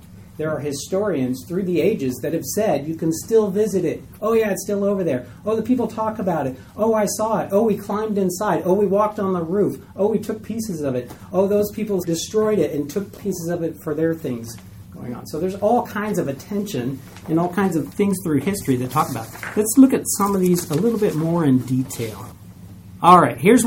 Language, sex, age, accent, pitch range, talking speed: English, male, 40-59, American, 130-190 Hz, 235 wpm